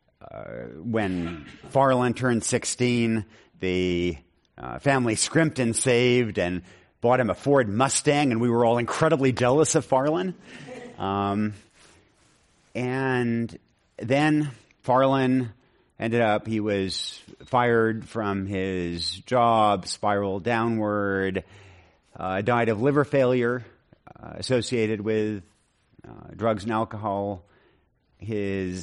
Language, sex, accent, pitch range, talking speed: English, male, American, 100-130 Hz, 110 wpm